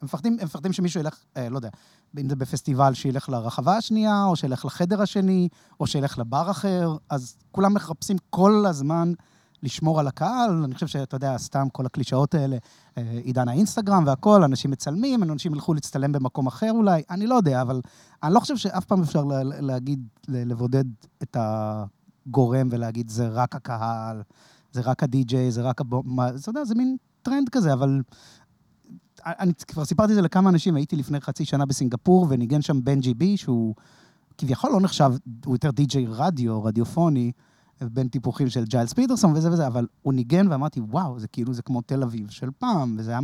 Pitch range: 125-175 Hz